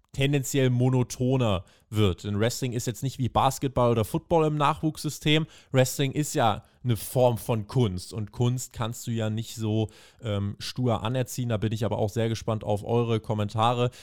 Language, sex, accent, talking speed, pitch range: German, male, German, 175 wpm, 110-130 Hz